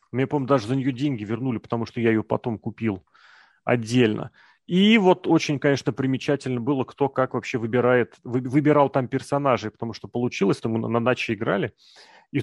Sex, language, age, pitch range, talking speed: male, Russian, 30-49, 115-140 Hz, 175 wpm